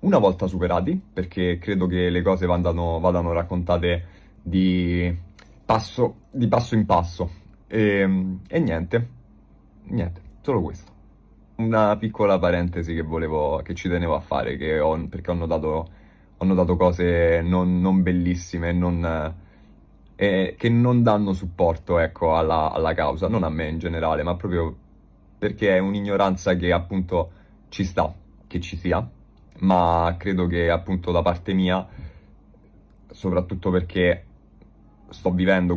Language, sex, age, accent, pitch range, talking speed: Italian, male, 20-39, native, 85-95 Hz, 135 wpm